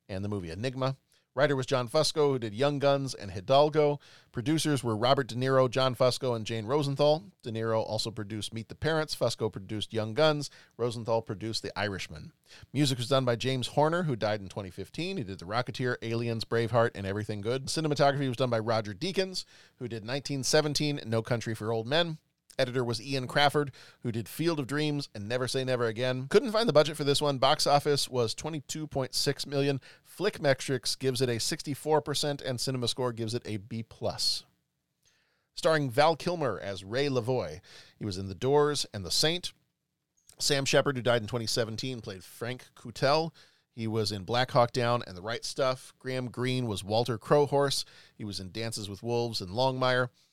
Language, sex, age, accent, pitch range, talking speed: English, male, 40-59, American, 115-145 Hz, 185 wpm